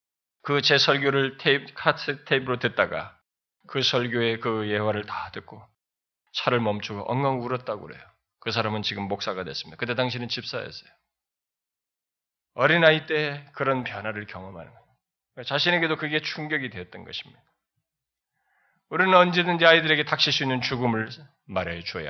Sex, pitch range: male, 135-195 Hz